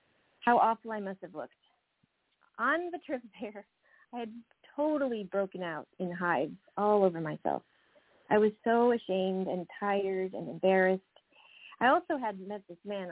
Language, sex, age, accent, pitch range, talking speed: English, female, 40-59, American, 195-250 Hz, 155 wpm